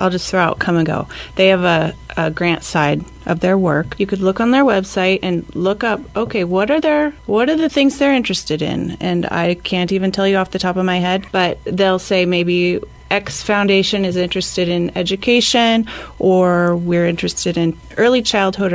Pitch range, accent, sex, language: 185-220 Hz, American, female, English